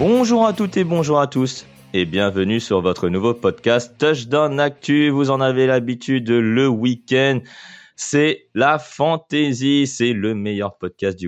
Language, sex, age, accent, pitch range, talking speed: French, male, 20-39, French, 100-135 Hz, 155 wpm